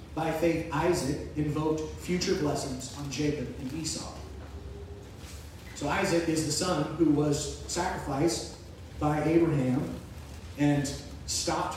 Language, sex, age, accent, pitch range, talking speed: English, male, 30-49, American, 115-170 Hz, 110 wpm